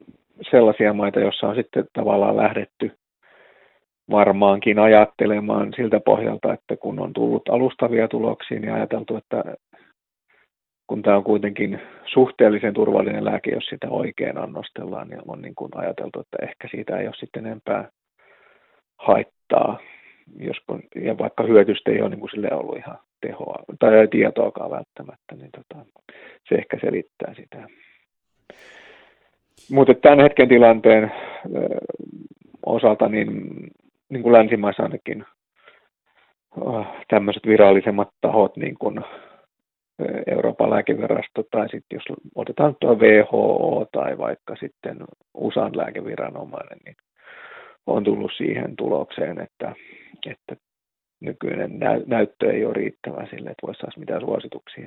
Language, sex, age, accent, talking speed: Finnish, male, 40-59, native, 115 wpm